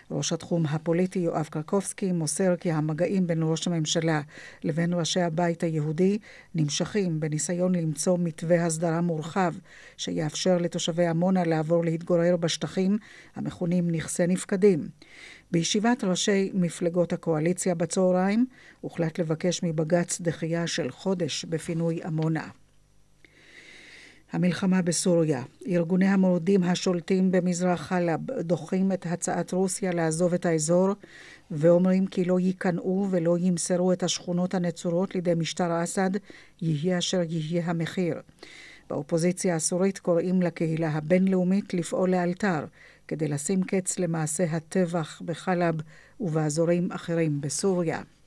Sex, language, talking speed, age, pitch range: female, Hebrew, 110 wpm, 50-69, 165-185 Hz